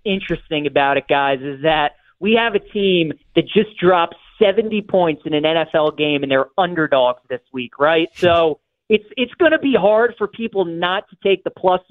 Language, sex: English, male